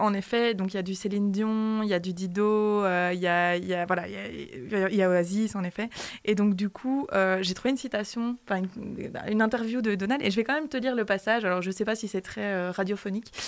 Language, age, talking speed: French, 20-39, 265 wpm